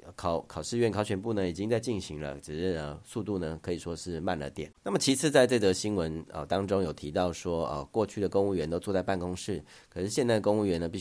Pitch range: 85-105 Hz